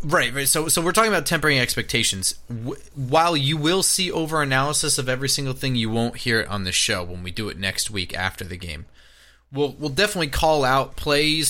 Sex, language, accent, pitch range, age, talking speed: male, English, American, 100-140 Hz, 30-49, 210 wpm